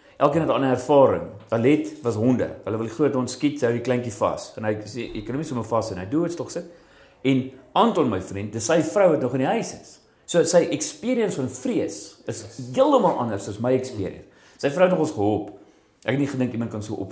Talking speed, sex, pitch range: 250 wpm, male, 110-140 Hz